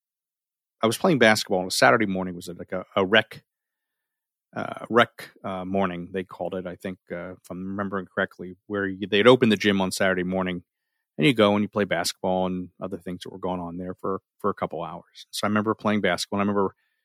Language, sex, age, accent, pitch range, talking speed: English, male, 40-59, American, 95-120 Hz, 225 wpm